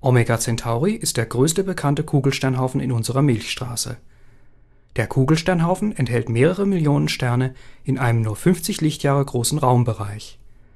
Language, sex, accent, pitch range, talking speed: German, male, German, 120-155 Hz, 130 wpm